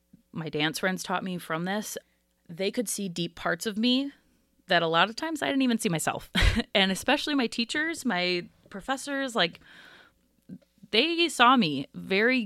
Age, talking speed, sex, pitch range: 30-49, 170 wpm, female, 160-210 Hz